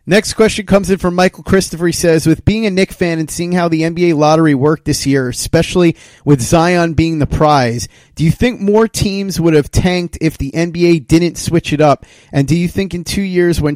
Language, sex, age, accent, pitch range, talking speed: English, male, 30-49, American, 140-175 Hz, 225 wpm